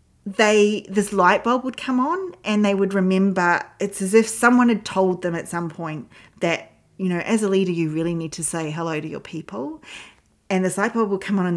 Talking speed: 230 wpm